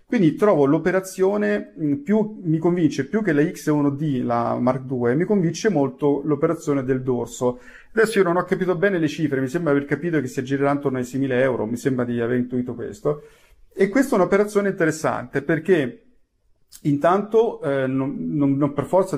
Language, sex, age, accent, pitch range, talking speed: Italian, male, 40-59, native, 130-165 Hz, 180 wpm